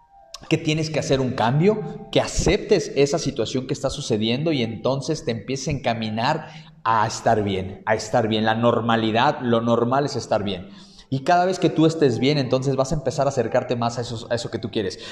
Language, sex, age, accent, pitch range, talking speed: Spanish, male, 30-49, Mexican, 115-145 Hz, 210 wpm